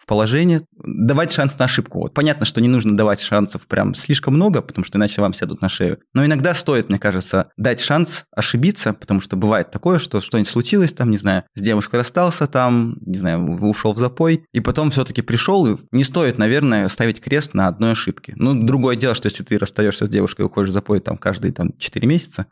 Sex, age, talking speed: male, 20-39, 215 wpm